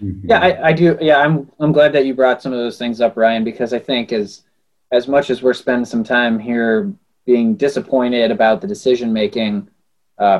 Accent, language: American, English